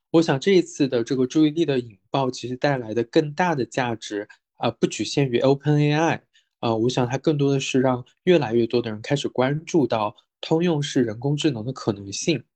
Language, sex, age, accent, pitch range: Chinese, male, 20-39, native, 115-145 Hz